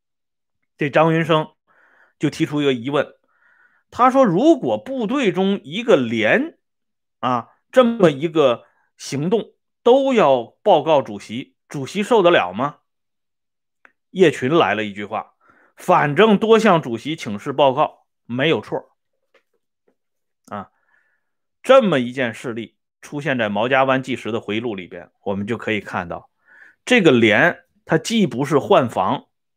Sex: male